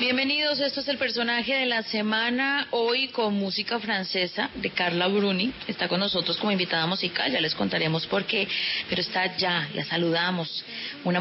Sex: female